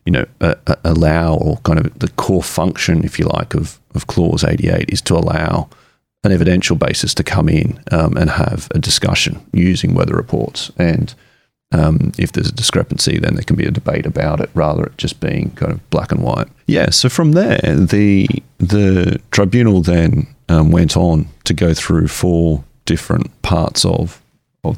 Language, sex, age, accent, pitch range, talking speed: English, male, 30-49, Australian, 80-105 Hz, 185 wpm